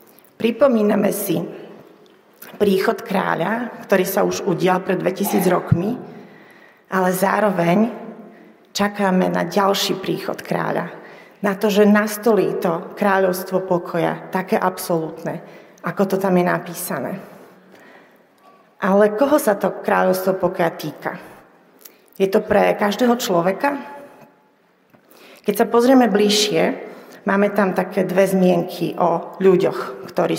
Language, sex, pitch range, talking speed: Slovak, female, 180-215 Hz, 110 wpm